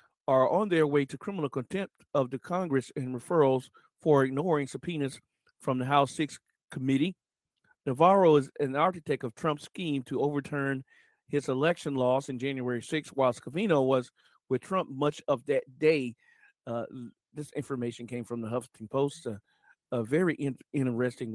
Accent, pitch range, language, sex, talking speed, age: American, 125-150 Hz, English, male, 155 wpm, 40-59